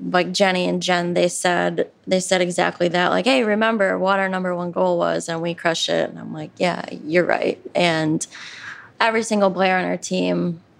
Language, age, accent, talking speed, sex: English, 20-39, American, 200 wpm, female